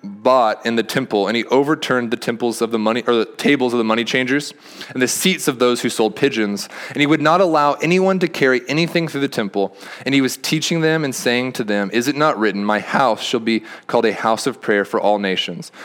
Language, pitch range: English, 120-150 Hz